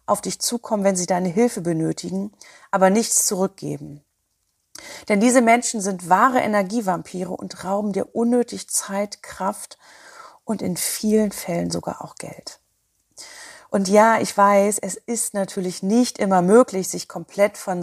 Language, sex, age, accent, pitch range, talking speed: German, female, 40-59, German, 175-220 Hz, 145 wpm